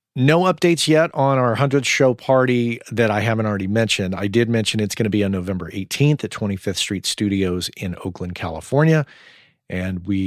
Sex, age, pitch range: male, 40-59, 100-130 Hz